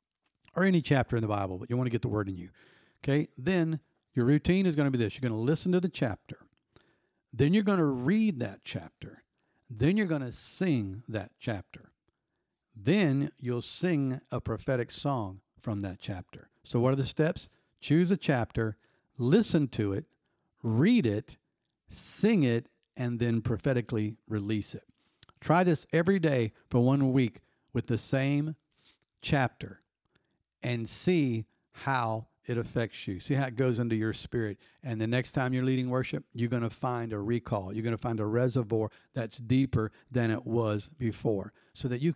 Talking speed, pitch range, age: 180 wpm, 110-140 Hz, 50-69